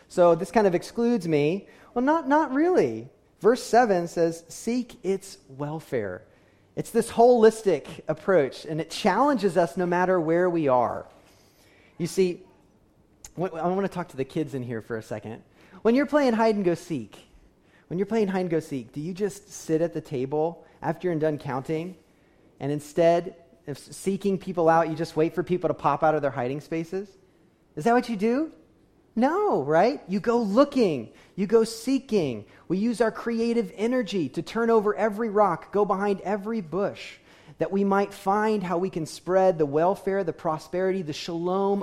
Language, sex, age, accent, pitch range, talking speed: English, male, 30-49, American, 145-200 Hz, 180 wpm